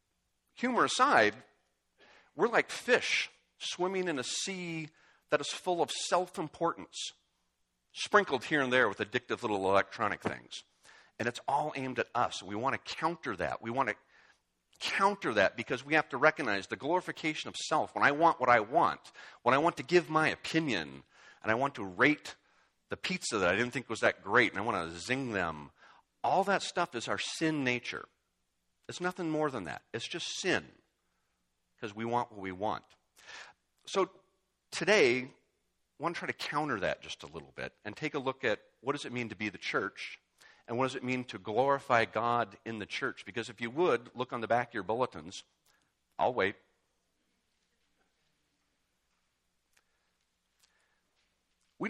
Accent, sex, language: American, male, English